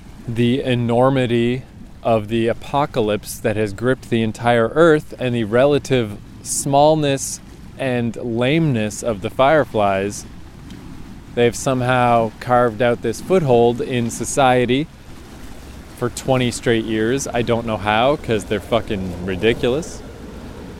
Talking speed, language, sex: 115 wpm, English, male